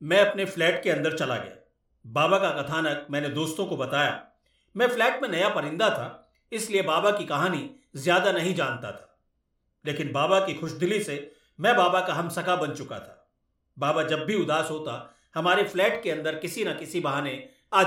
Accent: native